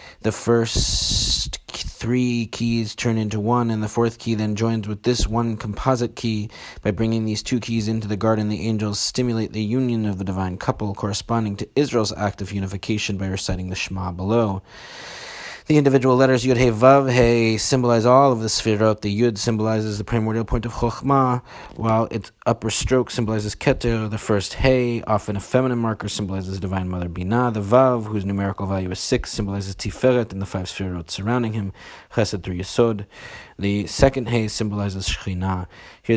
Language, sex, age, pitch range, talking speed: English, male, 30-49, 100-120 Hz, 180 wpm